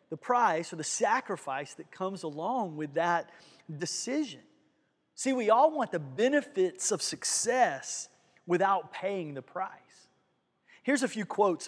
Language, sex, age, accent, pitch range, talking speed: English, male, 30-49, American, 155-245 Hz, 140 wpm